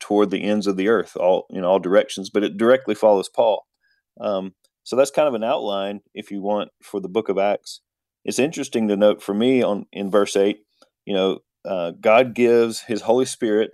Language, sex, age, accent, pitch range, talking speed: English, male, 40-59, American, 100-120 Hz, 210 wpm